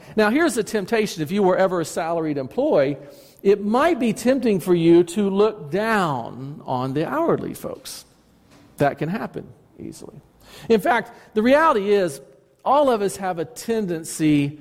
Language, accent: English, American